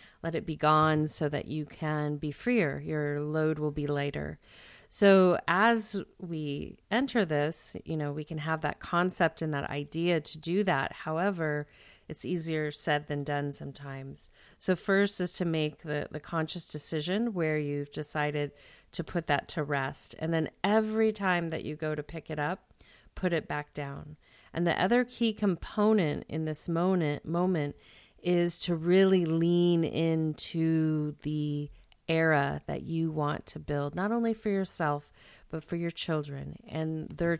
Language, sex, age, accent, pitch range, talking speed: English, female, 40-59, American, 150-175 Hz, 165 wpm